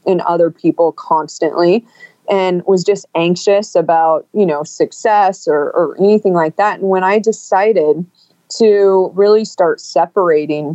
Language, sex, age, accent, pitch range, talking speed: English, female, 30-49, American, 175-230 Hz, 140 wpm